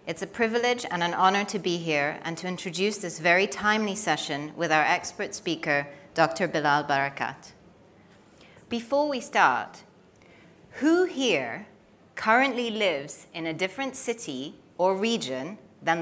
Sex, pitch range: female, 155-210 Hz